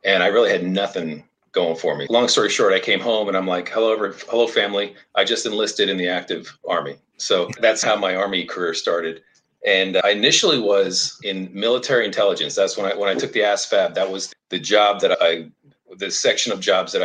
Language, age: English, 40-59